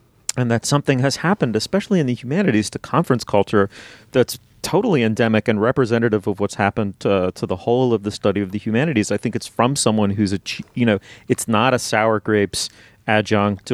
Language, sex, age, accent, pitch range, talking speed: English, male, 30-49, American, 100-125 Hz, 195 wpm